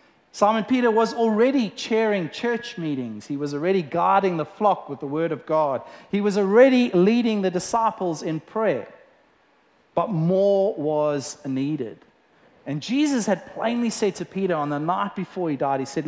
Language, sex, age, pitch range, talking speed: English, male, 30-49, 170-240 Hz, 170 wpm